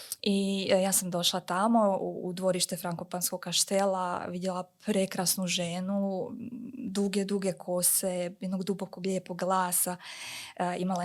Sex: female